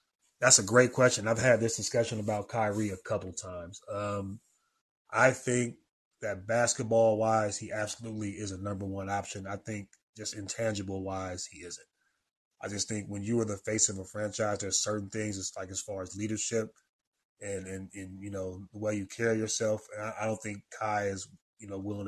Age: 20-39